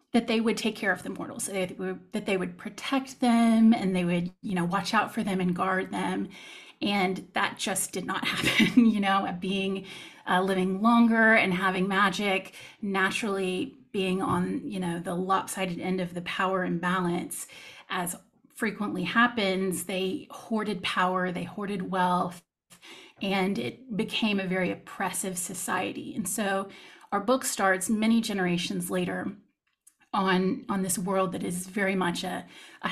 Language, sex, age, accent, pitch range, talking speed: English, female, 30-49, American, 185-225 Hz, 155 wpm